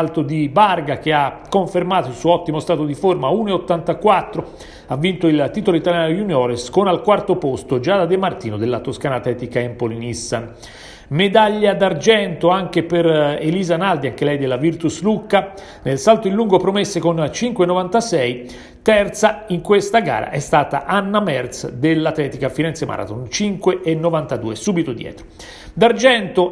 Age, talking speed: 40-59, 145 wpm